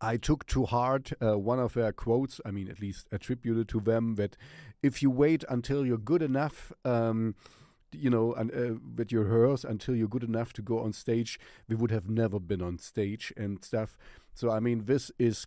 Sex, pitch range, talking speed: male, 100-120 Hz, 215 wpm